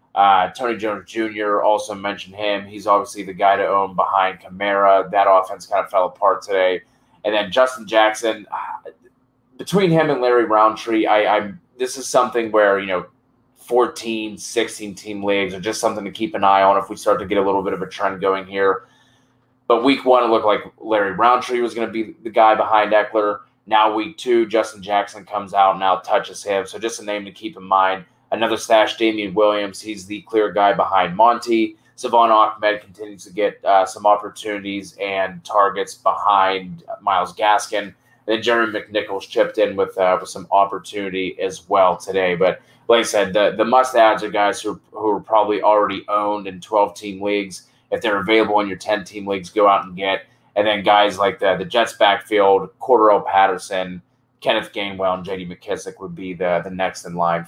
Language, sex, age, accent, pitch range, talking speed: English, male, 20-39, American, 100-110 Hz, 195 wpm